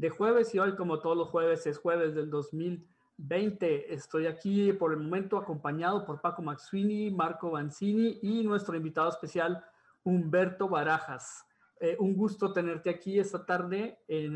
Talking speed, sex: 155 wpm, male